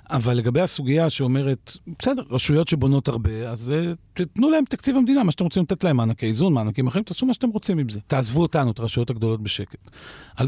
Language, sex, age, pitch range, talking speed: Hebrew, male, 40-59, 115-155 Hz, 200 wpm